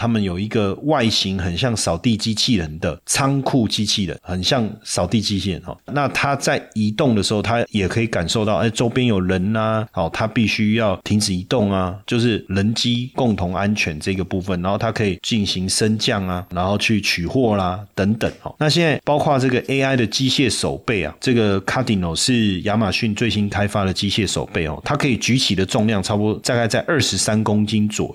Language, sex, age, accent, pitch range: Chinese, male, 30-49, native, 95-125 Hz